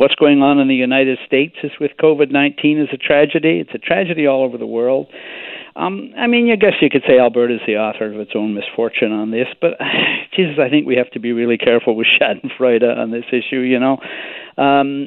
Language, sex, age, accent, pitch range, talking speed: English, male, 50-69, American, 125-195 Hz, 225 wpm